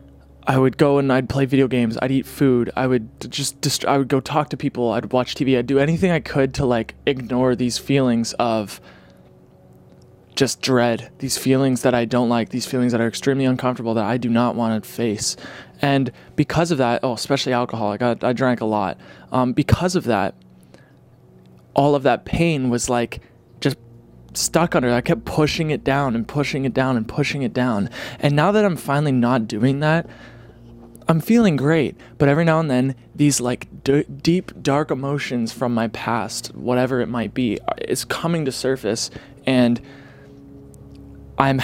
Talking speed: 185 wpm